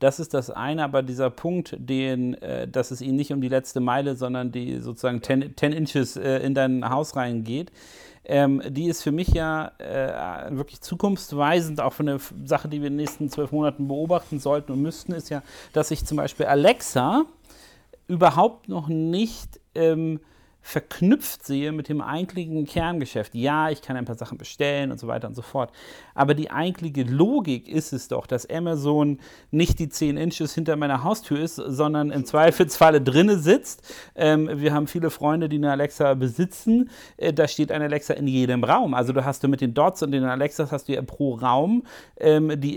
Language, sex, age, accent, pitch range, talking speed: German, male, 40-59, German, 135-160 Hz, 190 wpm